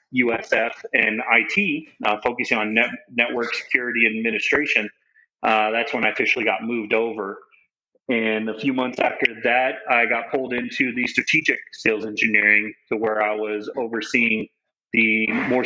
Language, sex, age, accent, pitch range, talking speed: English, male, 30-49, American, 110-125 Hz, 145 wpm